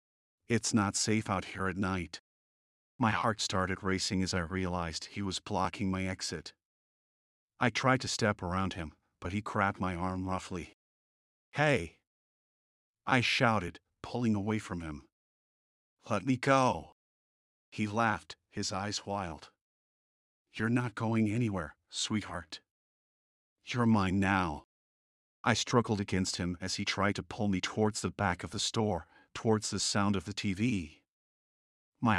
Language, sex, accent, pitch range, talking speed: English, male, American, 95-110 Hz, 145 wpm